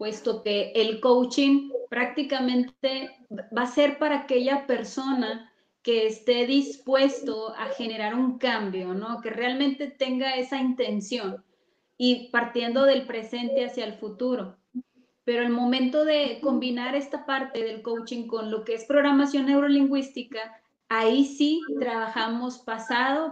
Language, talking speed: English, 130 wpm